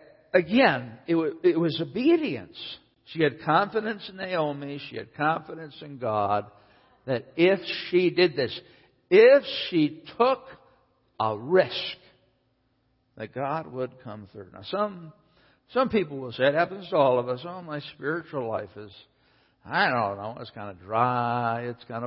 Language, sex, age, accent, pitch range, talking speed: English, male, 60-79, American, 115-170 Hz, 155 wpm